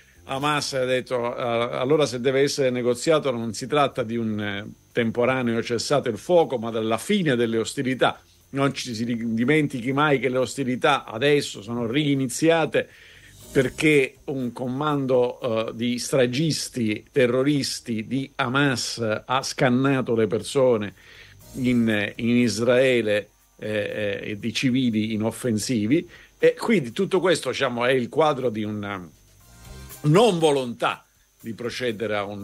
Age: 50-69